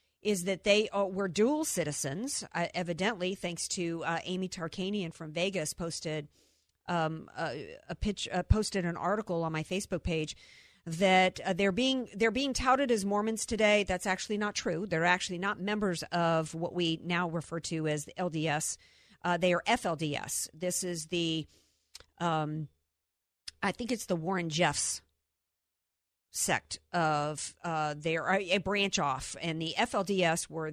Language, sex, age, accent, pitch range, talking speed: English, female, 50-69, American, 160-200 Hz, 155 wpm